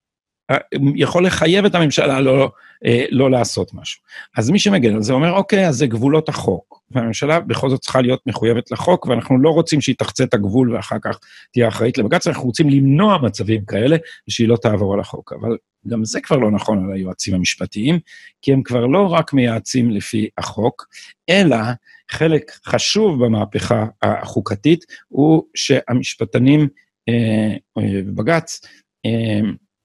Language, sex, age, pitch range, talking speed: Hebrew, male, 50-69, 110-155 Hz, 145 wpm